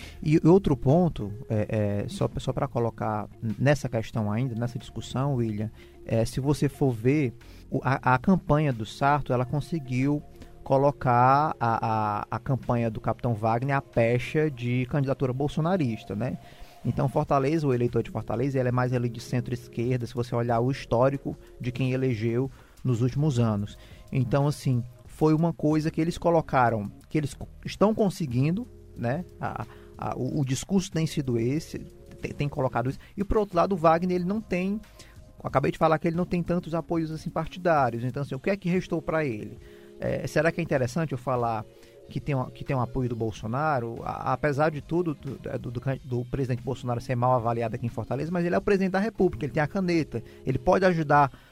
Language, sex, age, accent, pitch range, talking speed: Portuguese, male, 20-39, Brazilian, 120-155 Hz, 190 wpm